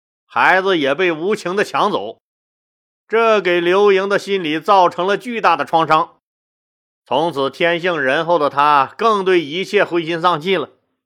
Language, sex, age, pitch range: Chinese, male, 30-49, 155-195 Hz